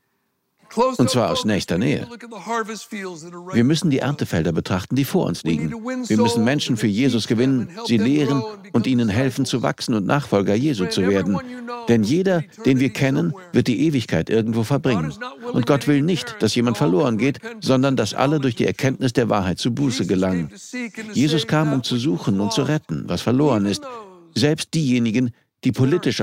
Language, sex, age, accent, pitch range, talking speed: German, male, 60-79, German, 115-170 Hz, 175 wpm